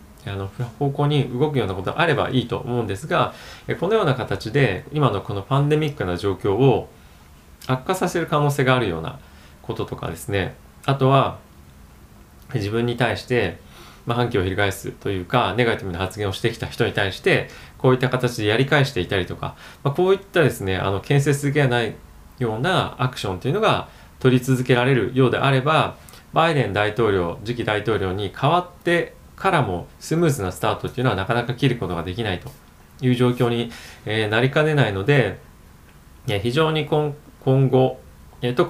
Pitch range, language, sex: 95-135 Hz, Japanese, male